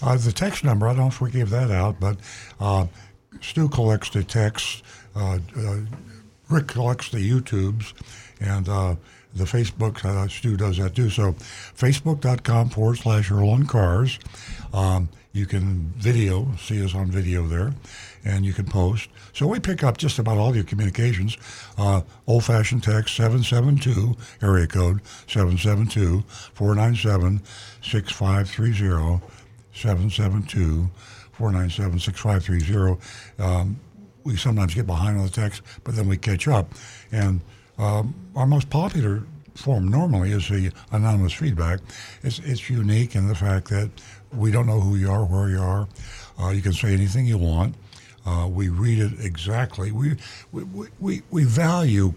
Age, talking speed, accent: 60-79, 155 wpm, American